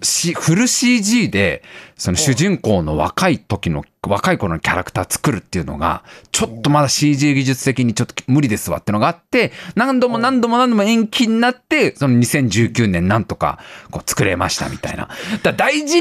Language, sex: Japanese, male